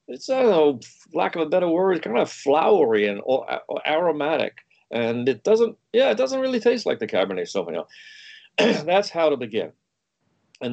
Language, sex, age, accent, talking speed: English, male, 50-69, American, 185 wpm